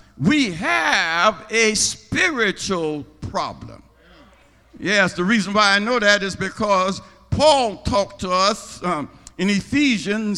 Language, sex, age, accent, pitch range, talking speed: English, male, 60-79, American, 200-260 Hz, 120 wpm